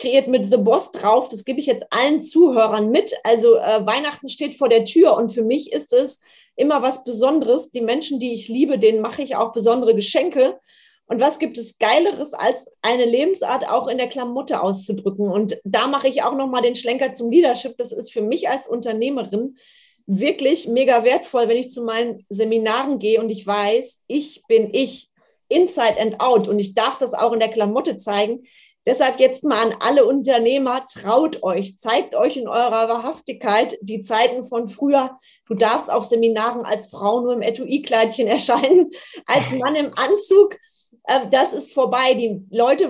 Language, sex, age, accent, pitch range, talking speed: German, female, 30-49, German, 225-270 Hz, 180 wpm